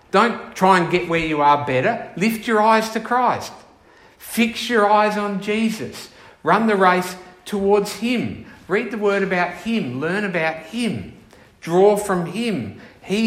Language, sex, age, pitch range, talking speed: English, male, 50-69, 140-200 Hz, 160 wpm